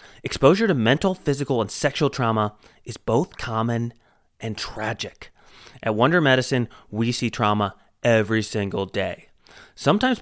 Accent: American